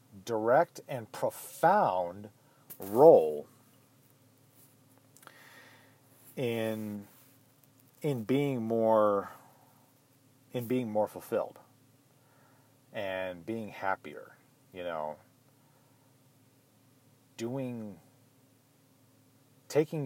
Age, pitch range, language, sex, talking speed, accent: 40-59, 115-135 Hz, English, male, 55 wpm, American